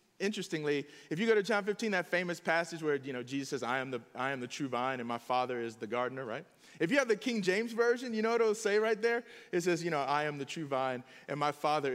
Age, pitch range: 30-49, 150-240 Hz